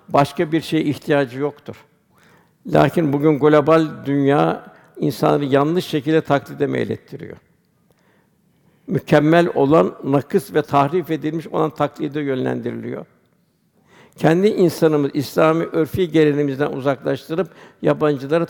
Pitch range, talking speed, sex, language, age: 145-170 Hz, 100 wpm, male, Turkish, 60-79